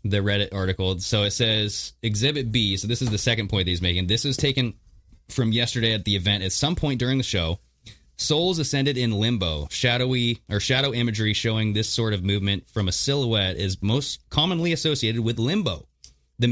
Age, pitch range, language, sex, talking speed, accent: 30-49, 90-120 Hz, English, male, 195 wpm, American